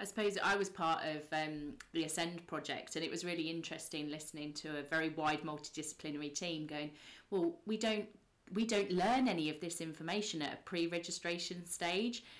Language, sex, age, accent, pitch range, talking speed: English, female, 30-49, British, 155-190 Hz, 180 wpm